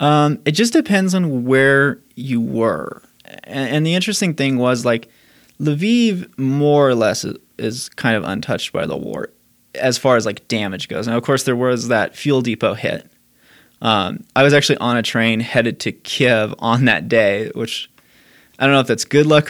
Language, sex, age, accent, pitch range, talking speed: English, male, 20-39, American, 115-140 Hz, 195 wpm